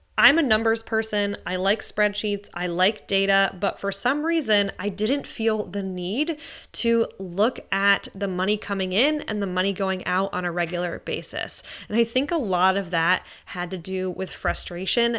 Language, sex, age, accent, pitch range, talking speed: English, female, 20-39, American, 180-220 Hz, 185 wpm